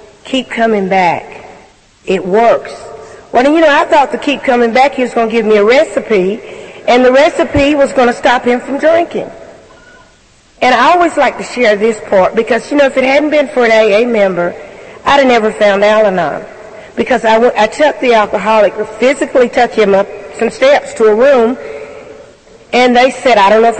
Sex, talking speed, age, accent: female, 200 wpm, 50-69, American